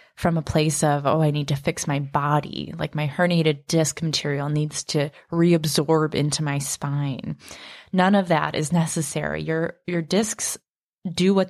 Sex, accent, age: female, American, 20-39